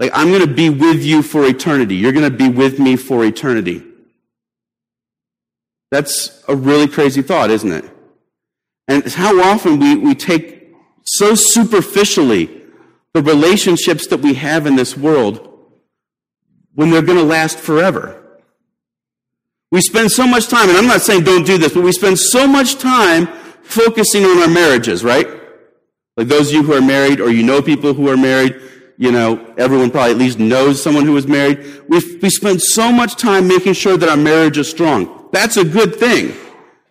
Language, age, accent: English, 40-59, American